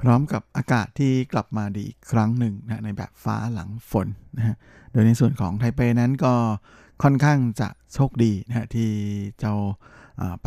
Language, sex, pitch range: Thai, male, 105-125 Hz